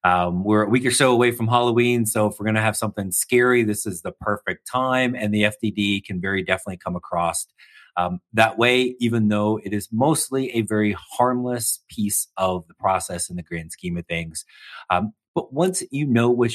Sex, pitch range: male, 90-125 Hz